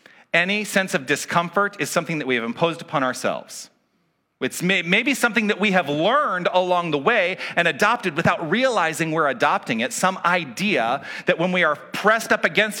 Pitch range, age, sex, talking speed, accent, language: 140-195 Hz, 40-59, male, 185 wpm, American, English